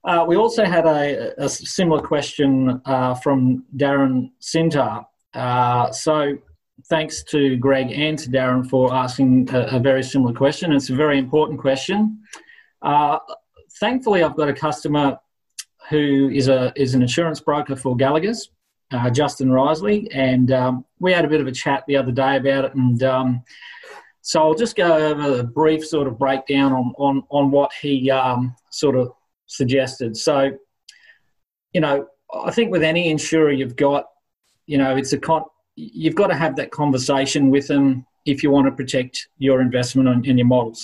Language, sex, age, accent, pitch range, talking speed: English, male, 30-49, Australian, 130-155 Hz, 175 wpm